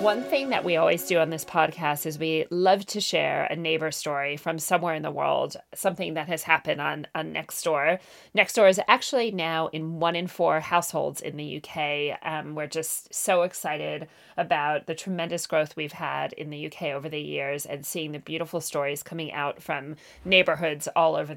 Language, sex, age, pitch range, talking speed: English, female, 30-49, 155-195 Hz, 195 wpm